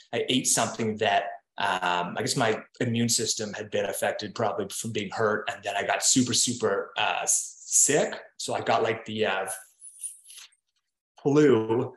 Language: English